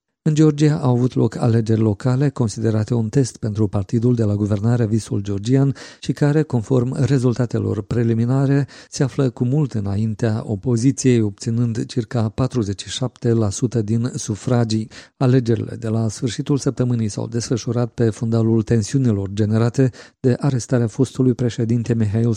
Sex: male